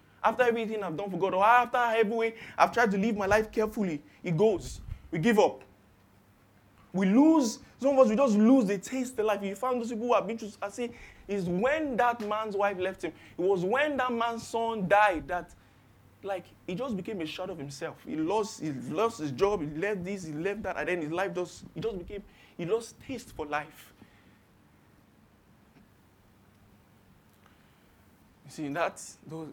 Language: English